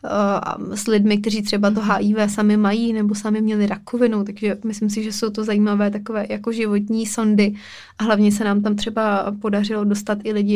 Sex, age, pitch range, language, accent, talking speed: female, 20-39, 205-220 Hz, Czech, native, 190 wpm